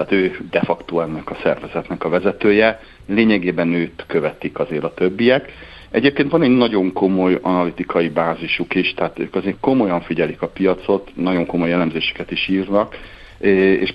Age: 60-79